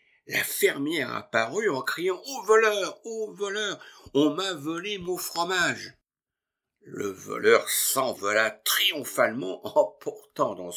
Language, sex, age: French, male, 60-79